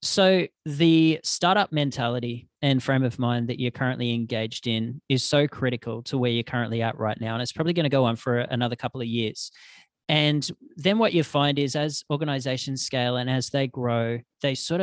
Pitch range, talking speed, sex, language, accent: 125-150 Hz, 200 wpm, male, English, Australian